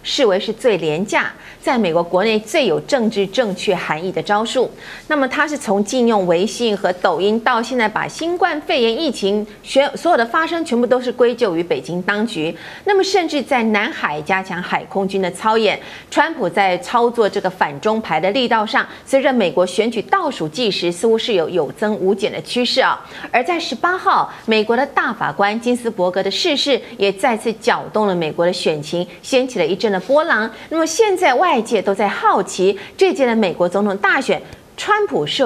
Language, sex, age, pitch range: Chinese, female, 30-49, 190-245 Hz